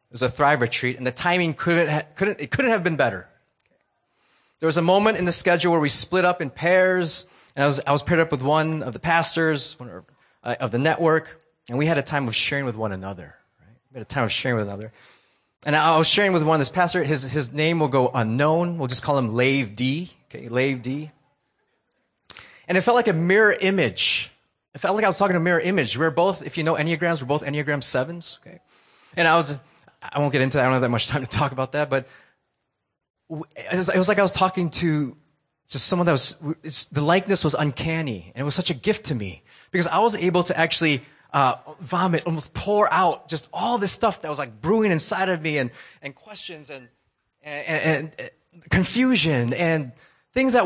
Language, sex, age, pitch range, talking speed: English, male, 30-49, 135-175 Hz, 230 wpm